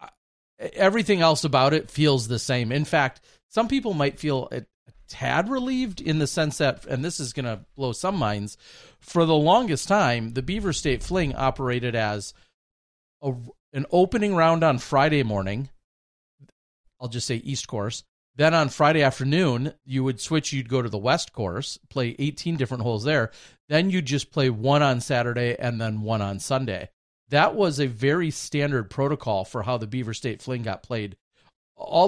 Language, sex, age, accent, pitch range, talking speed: English, male, 40-59, American, 115-150 Hz, 175 wpm